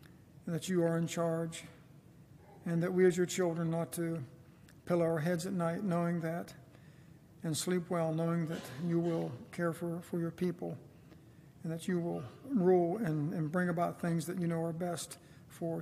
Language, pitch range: English, 160-175 Hz